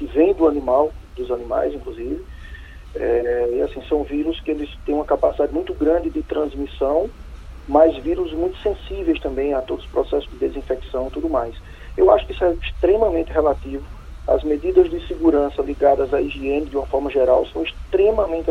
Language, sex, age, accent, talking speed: Portuguese, male, 40-59, Brazilian, 170 wpm